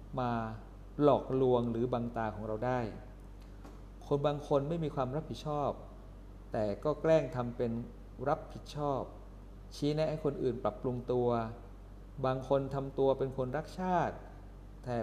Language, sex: Thai, male